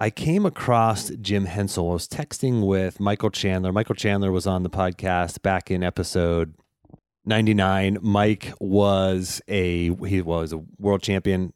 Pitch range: 95-120 Hz